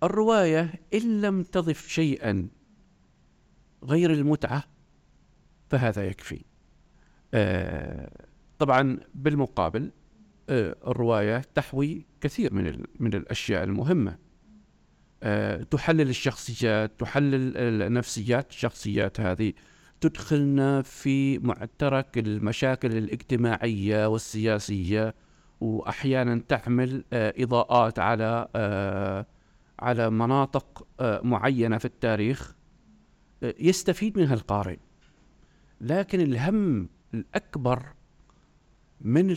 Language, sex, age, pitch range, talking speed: Arabic, male, 50-69, 110-160 Hz, 80 wpm